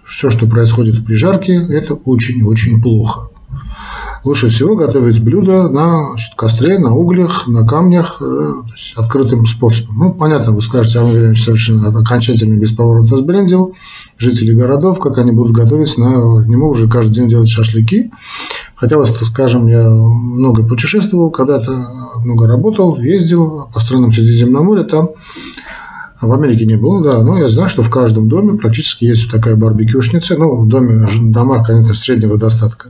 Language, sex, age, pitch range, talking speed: Russian, male, 40-59, 115-140 Hz, 150 wpm